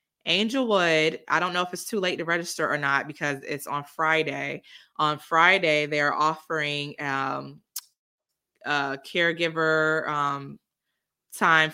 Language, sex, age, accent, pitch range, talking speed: English, female, 20-39, American, 145-160 Hz, 130 wpm